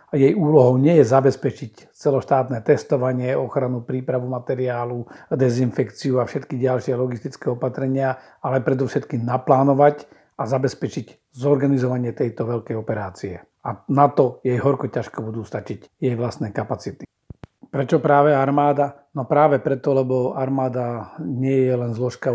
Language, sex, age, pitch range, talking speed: Slovak, male, 50-69, 125-140 Hz, 130 wpm